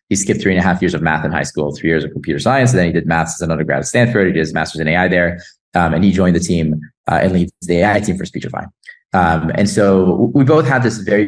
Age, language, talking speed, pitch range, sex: 20-39, English, 300 wpm, 90-110 Hz, male